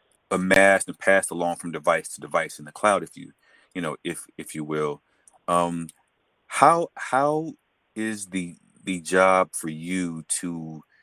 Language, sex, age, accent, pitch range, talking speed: English, male, 30-49, American, 80-95 Hz, 160 wpm